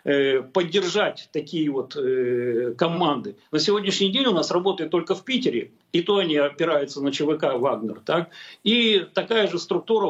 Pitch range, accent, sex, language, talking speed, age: 155-210 Hz, native, male, Russian, 155 wpm, 50-69